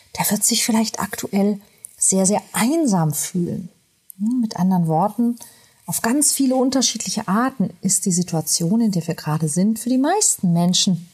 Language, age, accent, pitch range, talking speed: German, 40-59, German, 165-225 Hz, 155 wpm